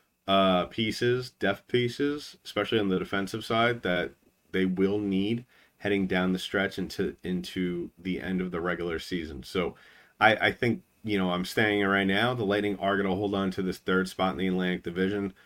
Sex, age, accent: male, 30-49, American